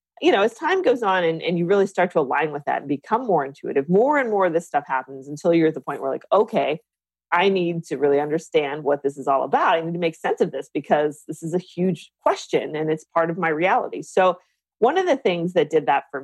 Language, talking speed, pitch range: English, 265 wpm, 150-185 Hz